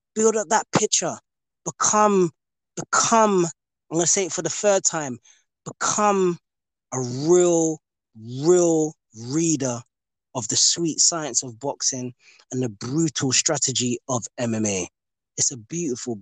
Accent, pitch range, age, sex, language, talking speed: British, 130-205 Hz, 20-39, male, English, 130 wpm